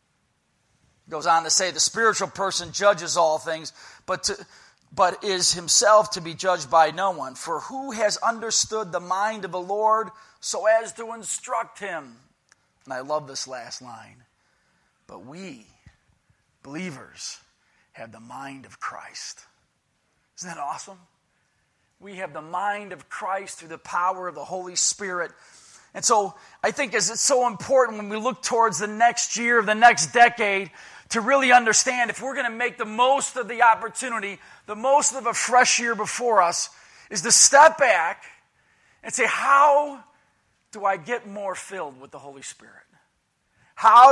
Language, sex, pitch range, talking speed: English, male, 180-235 Hz, 165 wpm